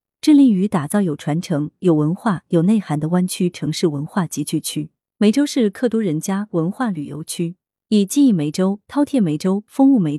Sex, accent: female, native